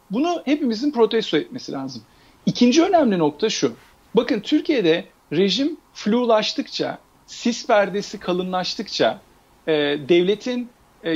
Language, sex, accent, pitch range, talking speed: Turkish, male, native, 175-230 Hz, 100 wpm